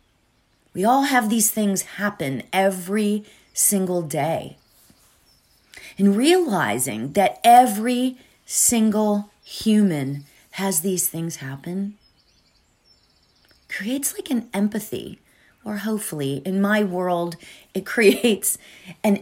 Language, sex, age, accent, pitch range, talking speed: English, female, 30-49, American, 175-225 Hz, 95 wpm